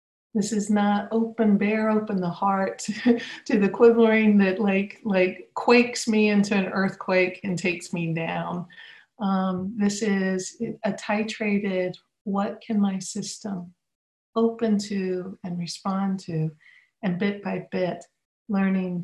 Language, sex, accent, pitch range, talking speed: English, female, American, 185-225 Hz, 130 wpm